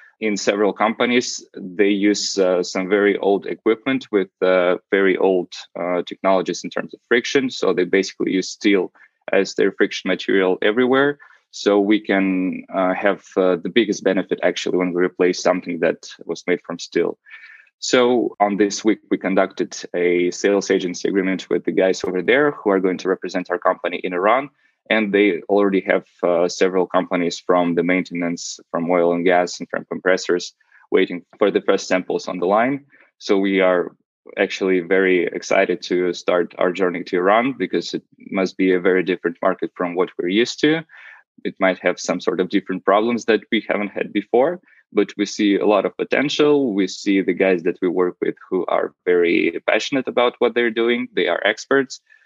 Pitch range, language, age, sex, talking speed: 90-120 Hz, English, 20-39, male, 185 wpm